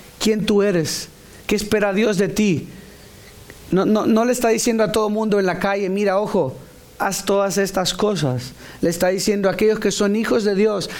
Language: English